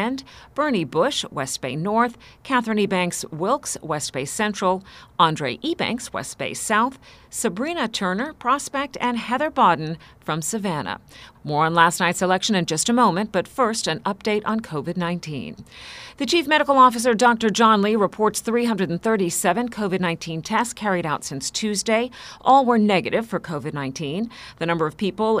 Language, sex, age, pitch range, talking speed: English, female, 40-59, 170-235 Hz, 150 wpm